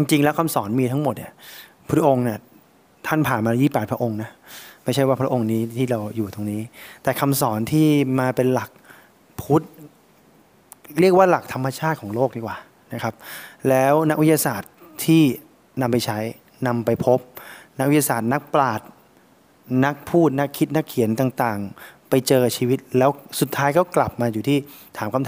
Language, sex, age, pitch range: English, male, 20-39, 120-145 Hz